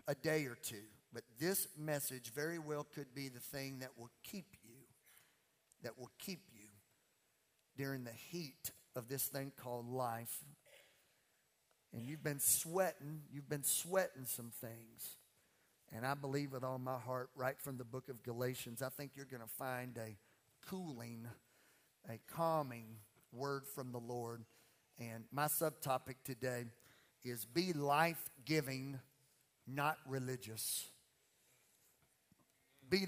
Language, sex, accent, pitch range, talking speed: English, male, American, 125-160 Hz, 135 wpm